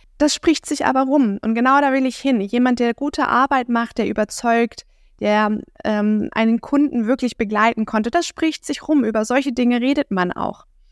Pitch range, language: 200-245 Hz, German